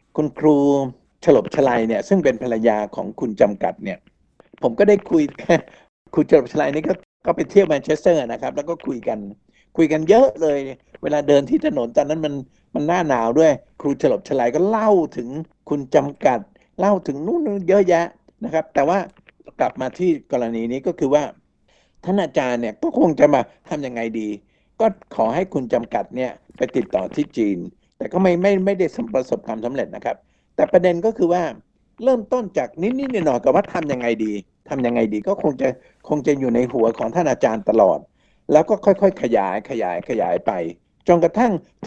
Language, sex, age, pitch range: Thai, male, 60-79, 135-200 Hz